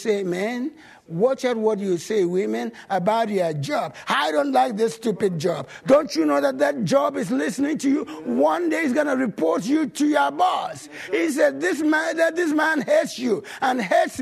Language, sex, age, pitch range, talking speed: English, male, 60-79, 245-335 Hz, 200 wpm